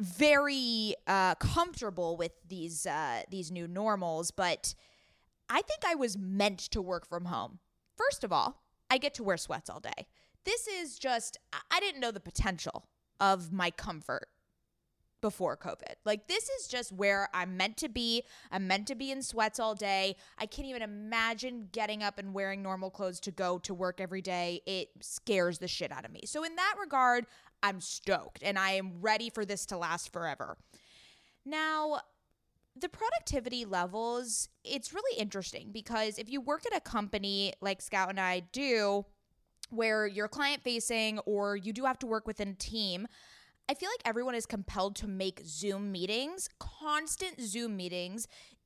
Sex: female